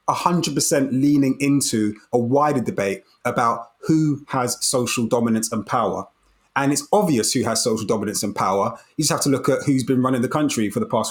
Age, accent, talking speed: 30-49, British, 195 wpm